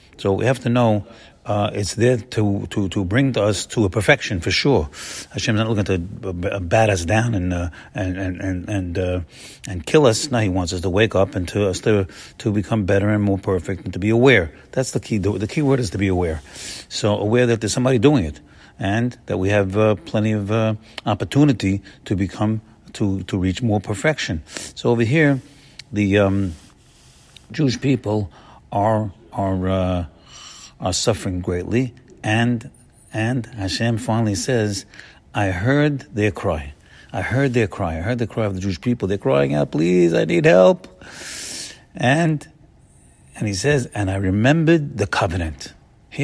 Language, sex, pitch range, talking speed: English, male, 95-130 Hz, 185 wpm